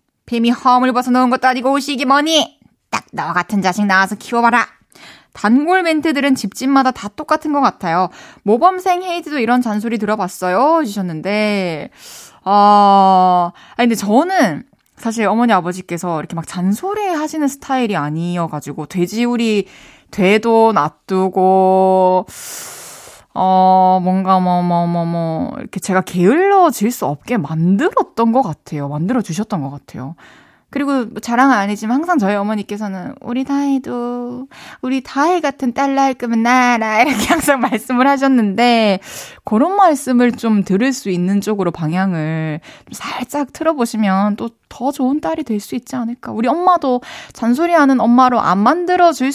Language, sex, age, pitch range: Korean, female, 20-39, 190-270 Hz